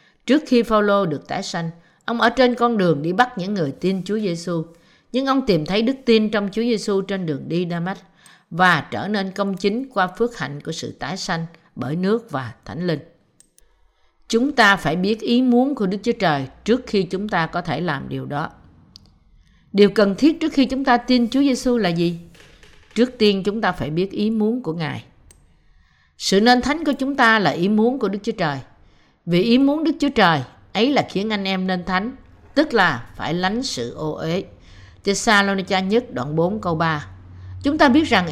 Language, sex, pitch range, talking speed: Vietnamese, female, 165-230 Hz, 210 wpm